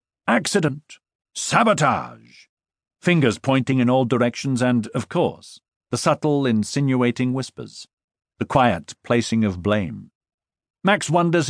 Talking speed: 110 wpm